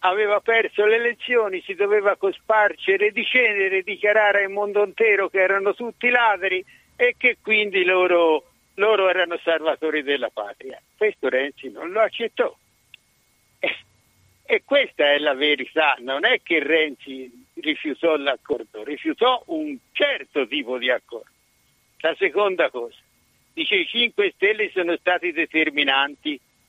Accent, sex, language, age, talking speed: native, male, Italian, 60-79, 135 wpm